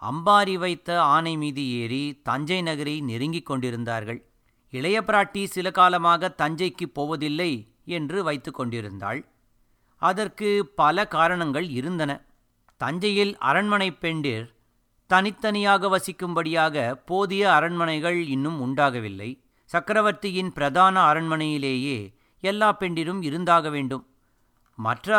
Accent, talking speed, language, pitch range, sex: native, 90 wpm, Tamil, 140-190 Hz, male